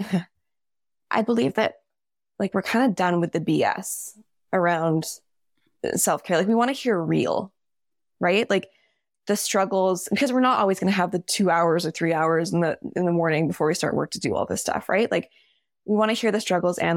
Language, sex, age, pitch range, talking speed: English, female, 20-39, 170-205 Hz, 210 wpm